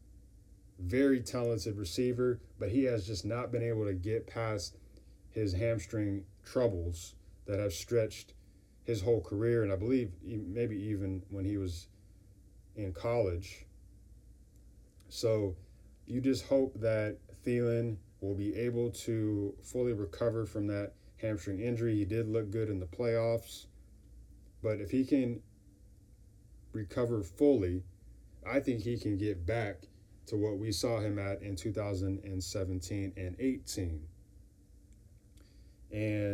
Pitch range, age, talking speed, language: 95-115 Hz, 30-49, 125 wpm, English